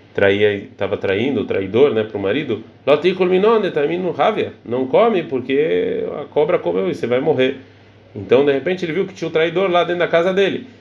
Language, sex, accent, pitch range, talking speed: Portuguese, male, Brazilian, 115-185 Hz, 185 wpm